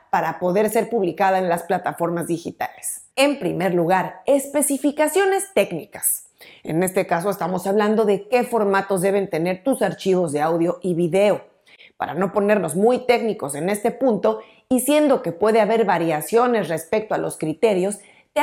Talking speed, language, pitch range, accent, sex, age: 155 wpm, Spanish, 185-250 Hz, Mexican, female, 40-59